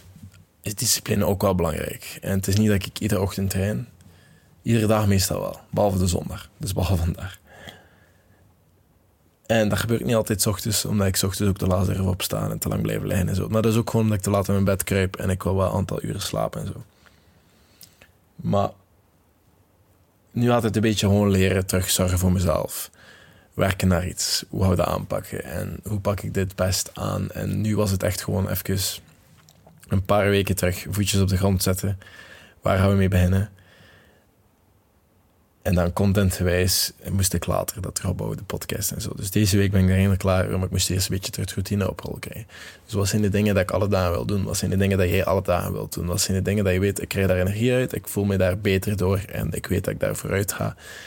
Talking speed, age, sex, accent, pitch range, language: 230 wpm, 20-39, male, Dutch, 90-105 Hz, Dutch